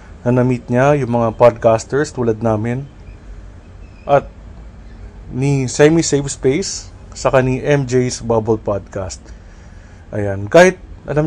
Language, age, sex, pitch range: Filipino, 20-39, male, 100-125 Hz